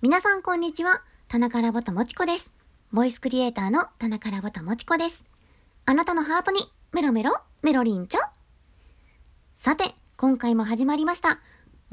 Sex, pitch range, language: male, 215-290 Hz, Japanese